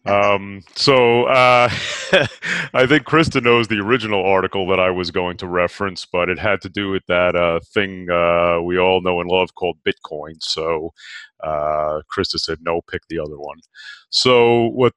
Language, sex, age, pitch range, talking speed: English, male, 30-49, 90-135 Hz, 175 wpm